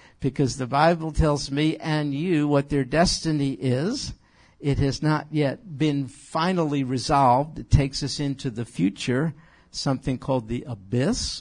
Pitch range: 130-155 Hz